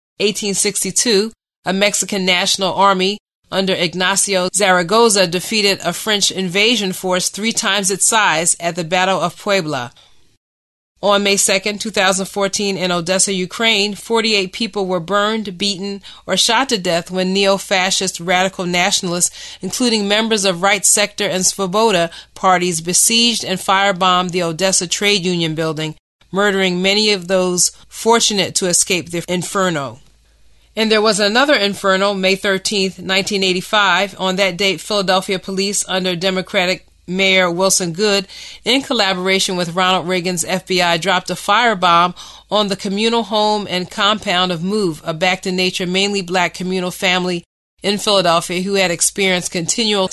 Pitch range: 180-200 Hz